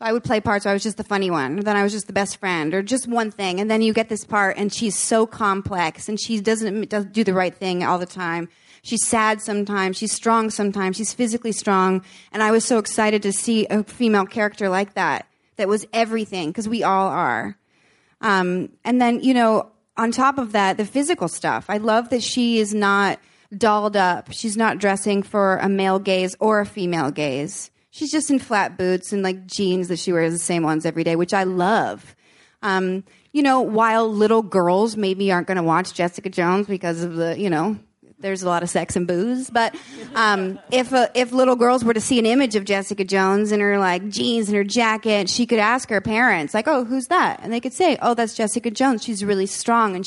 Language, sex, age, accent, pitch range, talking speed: English, female, 30-49, American, 190-225 Hz, 225 wpm